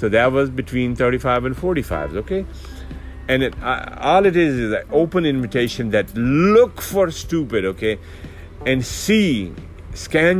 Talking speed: 150 wpm